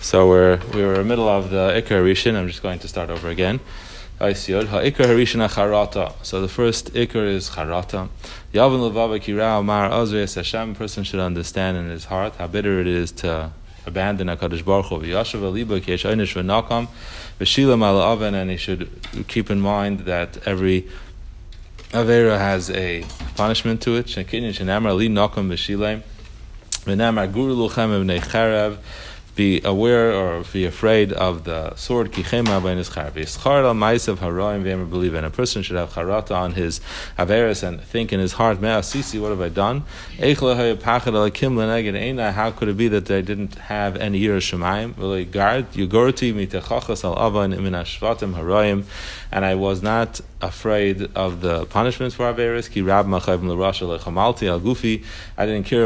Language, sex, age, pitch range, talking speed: English, male, 30-49, 90-110 Hz, 110 wpm